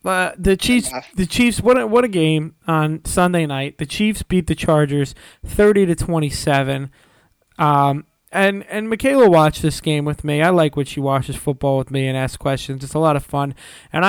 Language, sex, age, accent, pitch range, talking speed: English, male, 20-39, American, 140-185 Hz, 195 wpm